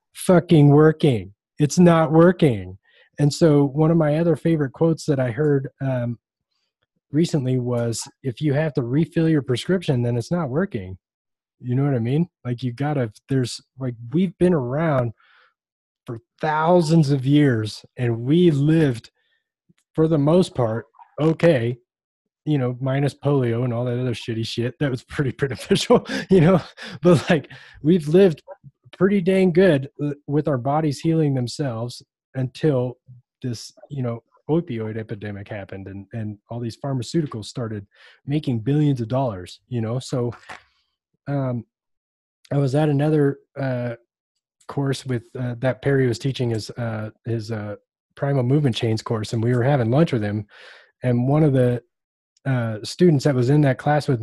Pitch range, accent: 120-155 Hz, American